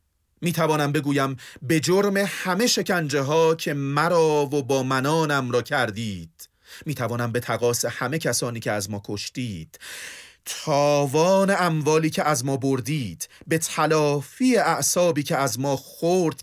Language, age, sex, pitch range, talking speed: Persian, 40-59, male, 100-155 Hz, 140 wpm